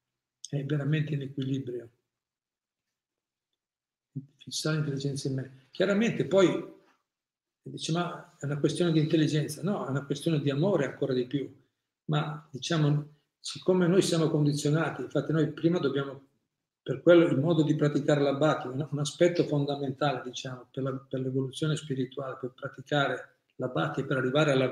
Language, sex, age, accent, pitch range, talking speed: Italian, male, 50-69, native, 135-155 Hz, 145 wpm